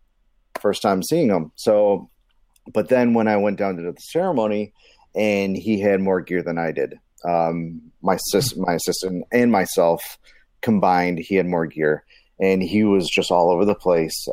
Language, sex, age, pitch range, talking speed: English, male, 30-49, 90-105 Hz, 175 wpm